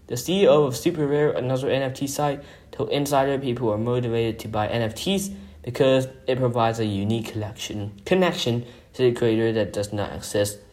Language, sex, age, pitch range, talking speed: English, male, 10-29, 115-150 Hz, 160 wpm